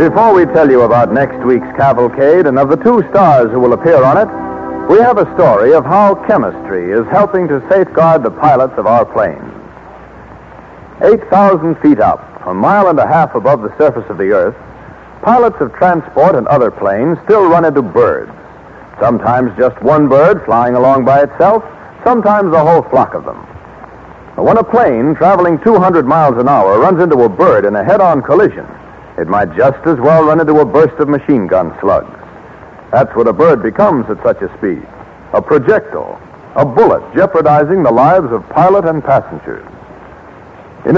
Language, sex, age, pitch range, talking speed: English, male, 60-79, 135-205 Hz, 180 wpm